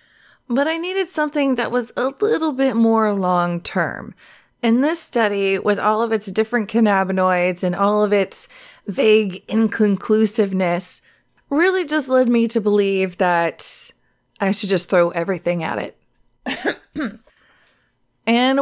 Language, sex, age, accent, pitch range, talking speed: English, female, 20-39, American, 185-240 Hz, 130 wpm